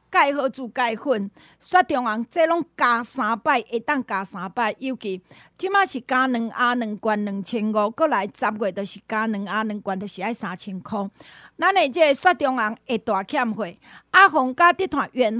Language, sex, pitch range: Chinese, female, 210-275 Hz